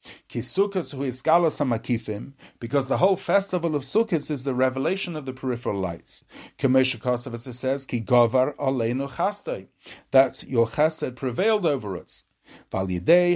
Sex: male